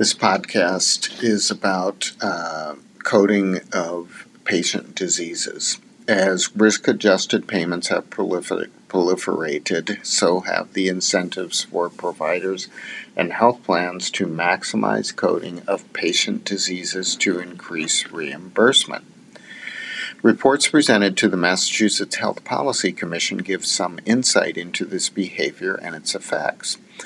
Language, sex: English, male